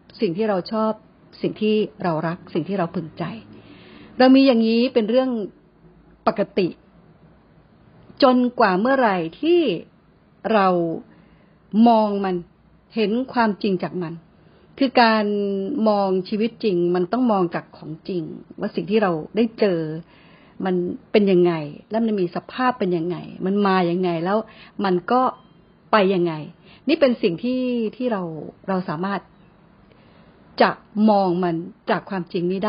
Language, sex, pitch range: Thai, female, 180-225 Hz